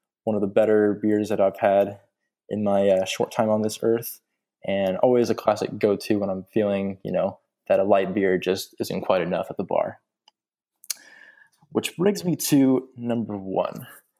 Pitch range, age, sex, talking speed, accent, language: 105-120 Hz, 20-39, male, 180 wpm, American, English